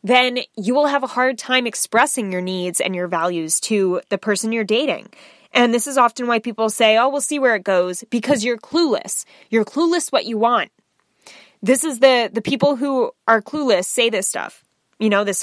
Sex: female